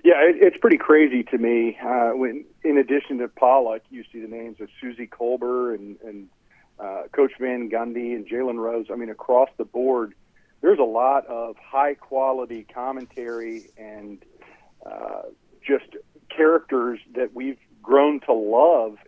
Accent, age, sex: American, 40-59, male